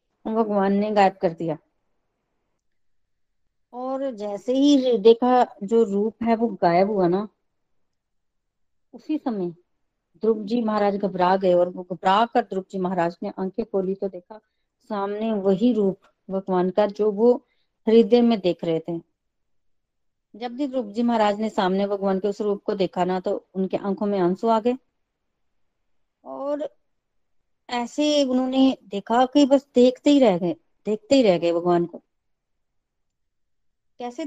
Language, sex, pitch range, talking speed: Hindi, female, 190-240 Hz, 140 wpm